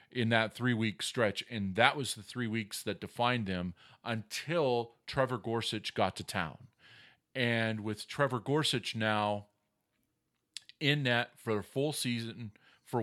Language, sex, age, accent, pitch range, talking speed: English, male, 40-59, American, 110-135 Hz, 145 wpm